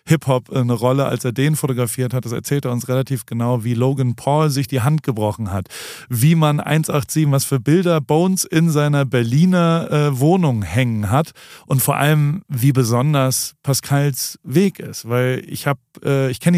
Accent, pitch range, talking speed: German, 115-145 Hz, 175 wpm